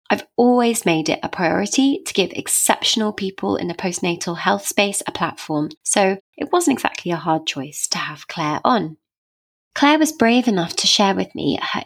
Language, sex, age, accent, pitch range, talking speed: English, female, 20-39, British, 170-240 Hz, 185 wpm